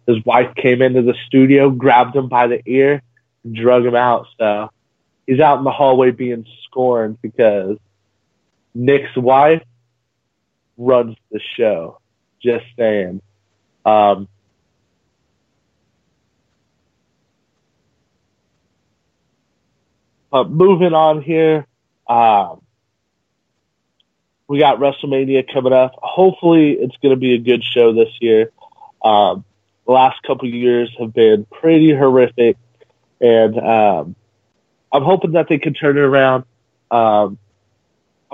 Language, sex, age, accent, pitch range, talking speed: English, male, 30-49, American, 115-135 Hz, 115 wpm